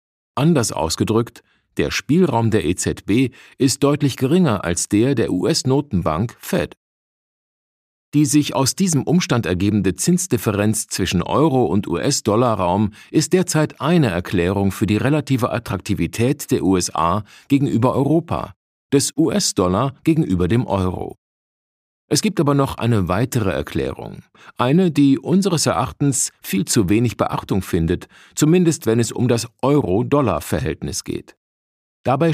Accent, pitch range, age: German, 95-140 Hz, 50-69